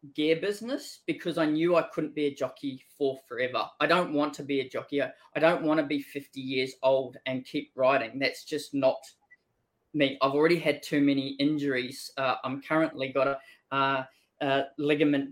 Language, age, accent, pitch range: English, 20-39, Australian, 140-165 Hz